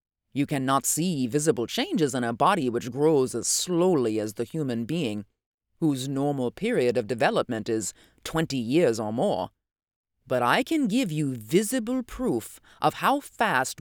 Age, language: 30-49, English